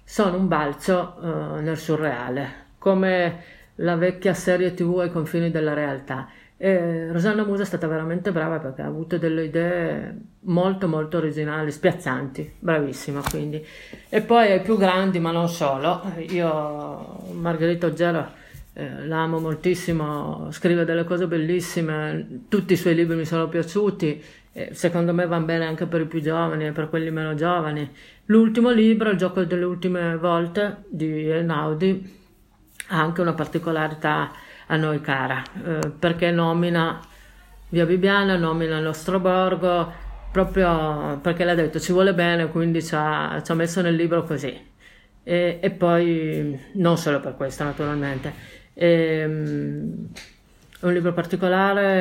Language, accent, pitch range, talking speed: Italian, native, 155-180 Hz, 140 wpm